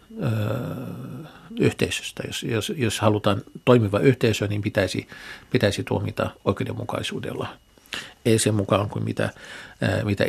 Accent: native